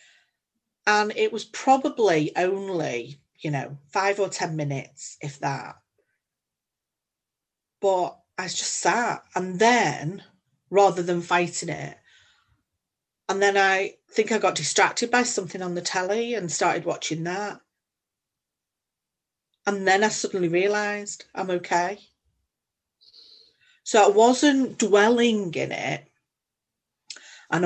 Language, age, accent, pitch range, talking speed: English, 40-59, British, 155-205 Hz, 115 wpm